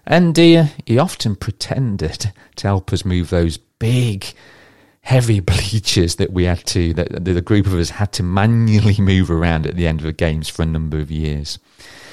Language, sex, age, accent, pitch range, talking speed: English, male, 40-59, British, 80-100 Hz, 195 wpm